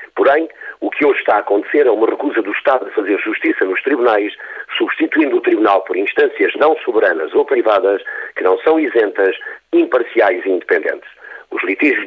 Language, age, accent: Portuguese, 50-69, Portuguese